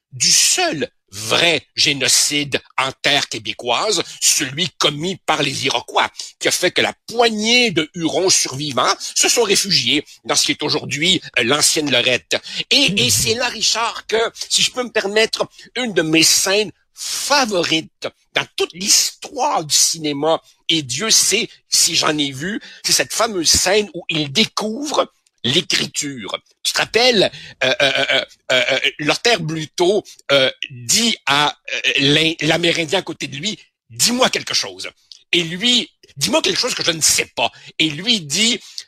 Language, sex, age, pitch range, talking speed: French, male, 60-79, 150-220 Hz, 155 wpm